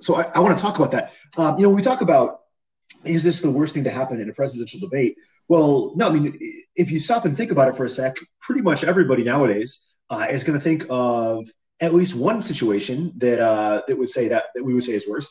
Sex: male